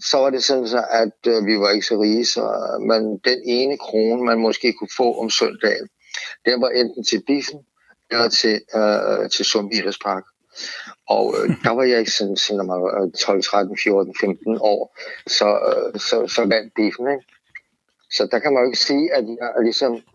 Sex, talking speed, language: male, 190 wpm, Danish